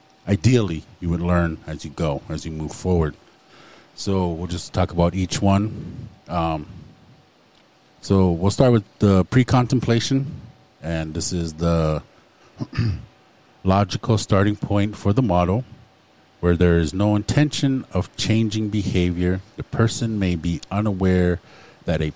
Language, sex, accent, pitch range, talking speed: English, male, American, 85-110 Hz, 135 wpm